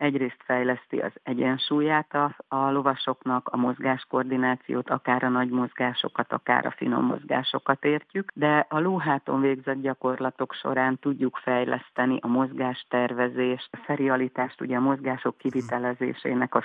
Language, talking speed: Hungarian, 130 wpm